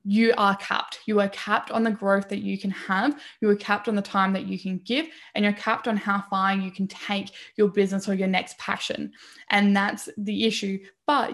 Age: 10-29